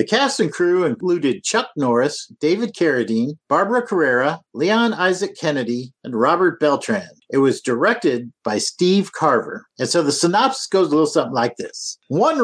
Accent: American